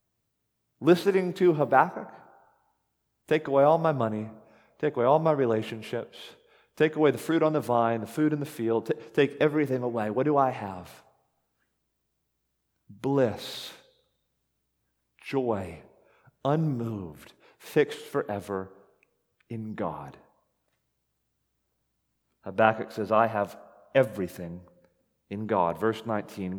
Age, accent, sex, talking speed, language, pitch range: 40-59, American, male, 110 wpm, English, 95-150 Hz